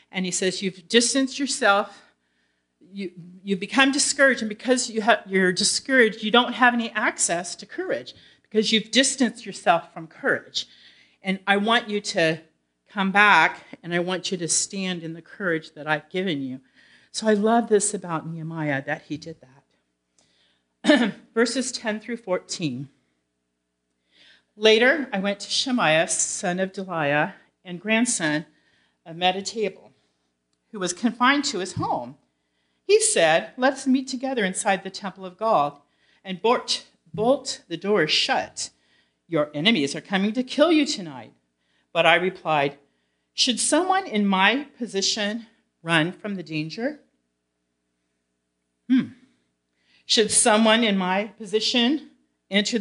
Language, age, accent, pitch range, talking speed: English, 40-59, American, 150-225 Hz, 140 wpm